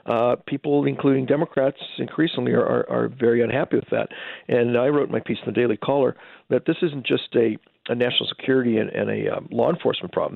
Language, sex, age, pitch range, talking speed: English, male, 50-69, 120-135 Hz, 205 wpm